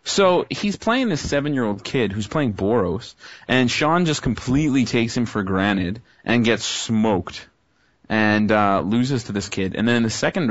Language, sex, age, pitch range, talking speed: English, male, 30-49, 105-130 Hz, 175 wpm